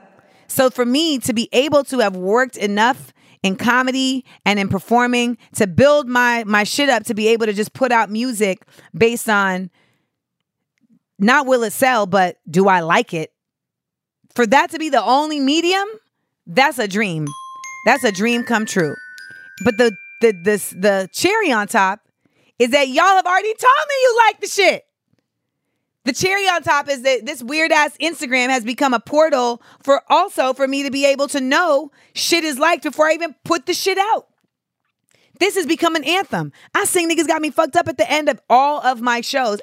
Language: English